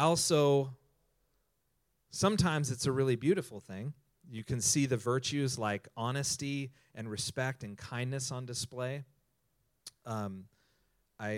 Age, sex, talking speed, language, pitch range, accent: 30-49, male, 115 wpm, English, 105-130 Hz, American